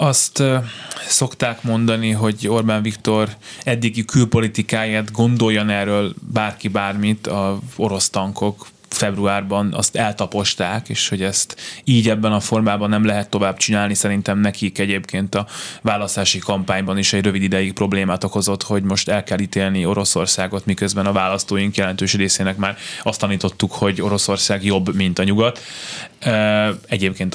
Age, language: 20-39, Hungarian